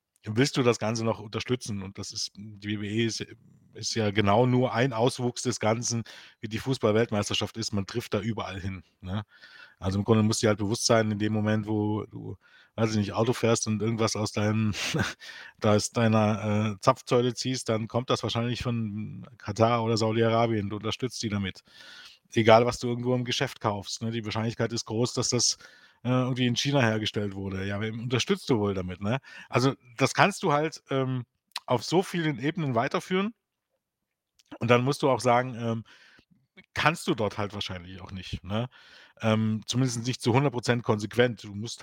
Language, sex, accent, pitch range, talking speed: German, male, German, 105-125 Hz, 185 wpm